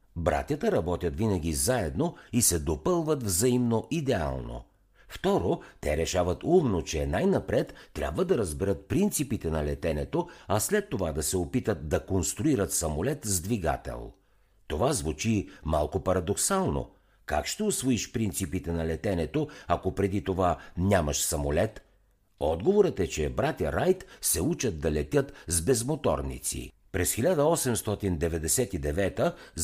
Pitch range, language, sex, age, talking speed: 80-125 Hz, Bulgarian, male, 60-79, 120 wpm